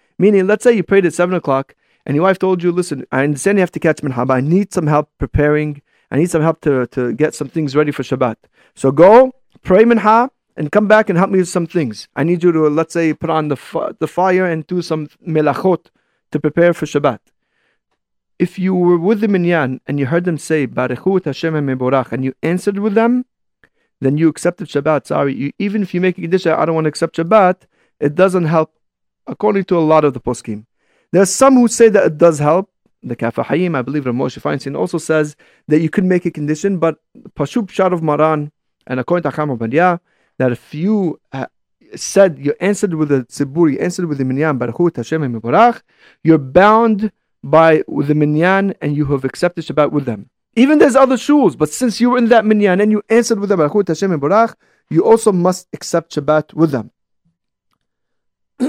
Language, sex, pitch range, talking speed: English, male, 145-190 Hz, 210 wpm